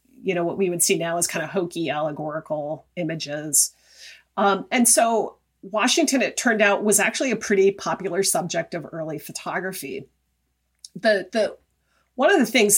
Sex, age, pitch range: female, 30-49, 170-210 Hz